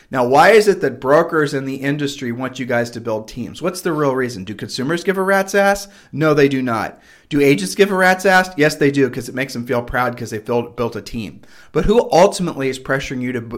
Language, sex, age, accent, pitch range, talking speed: English, male, 40-59, American, 125-160 Hz, 250 wpm